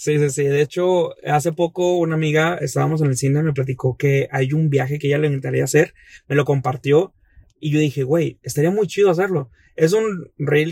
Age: 30-49